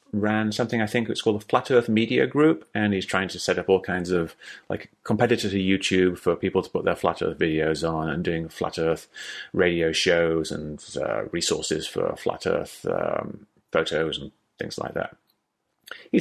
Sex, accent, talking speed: male, British, 195 wpm